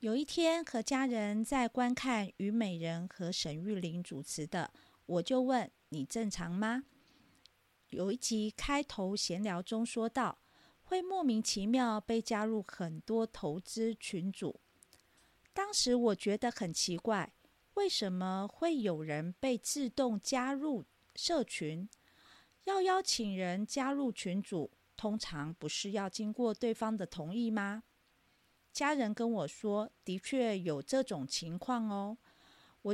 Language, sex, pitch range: Chinese, female, 190-255 Hz